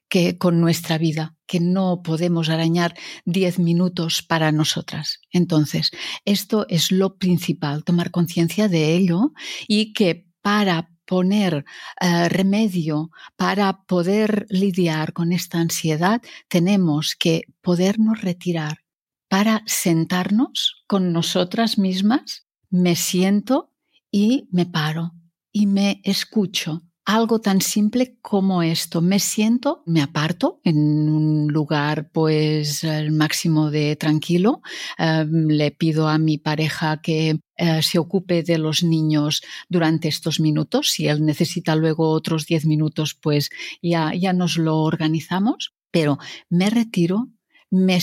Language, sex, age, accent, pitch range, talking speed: Spanish, female, 50-69, Spanish, 160-195 Hz, 125 wpm